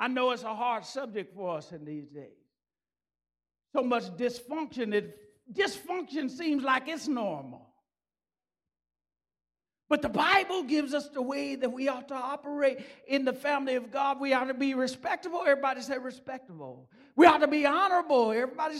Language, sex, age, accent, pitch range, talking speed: English, male, 50-69, American, 270-360 Hz, 160 wpm